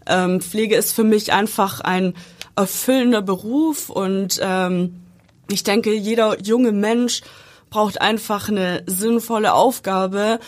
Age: 20-39